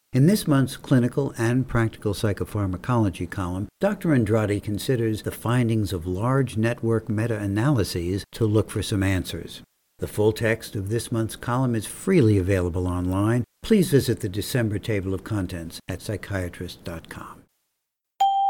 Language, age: English, 60-79